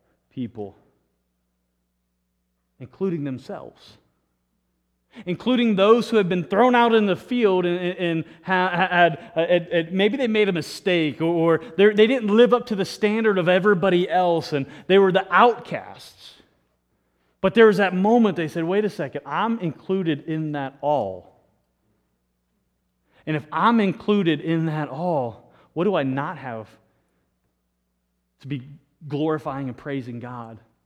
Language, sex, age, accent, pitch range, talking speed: English, male, 30-49, American, 130-220 Hz, 145 wpm